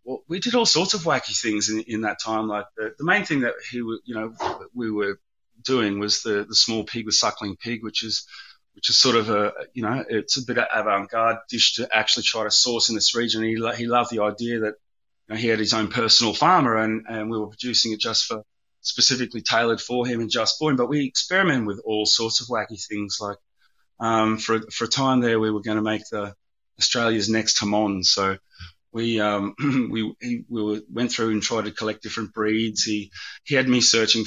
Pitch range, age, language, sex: 105-120 Hz, 30-49, English, male